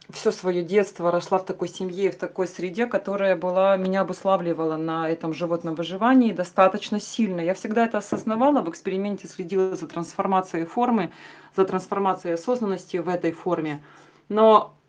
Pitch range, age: 180-220 Hz, 30-49